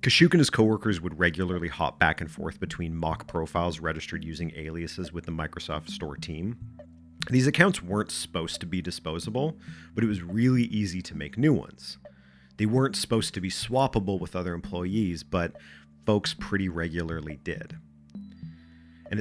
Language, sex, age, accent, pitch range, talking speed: English, male, 40-59, American, 80-110 Hz, 160 wpm